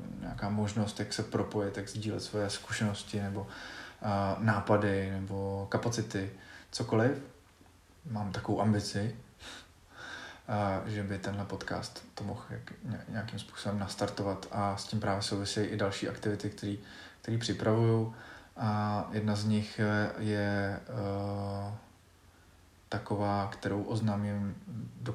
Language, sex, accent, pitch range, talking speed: Czech, male, native, 100-110 Hz, 115 wpm